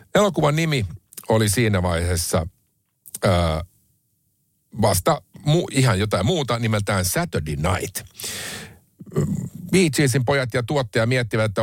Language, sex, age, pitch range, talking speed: Finnish, male, 60-79, 105-130 Hz, 105 wpm